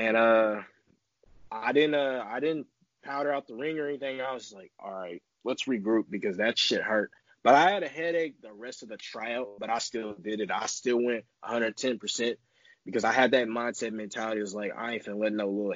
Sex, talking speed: male, 225 wpm